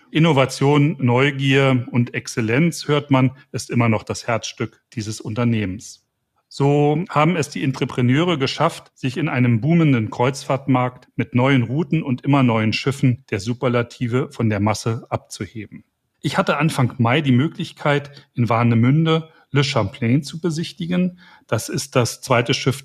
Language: German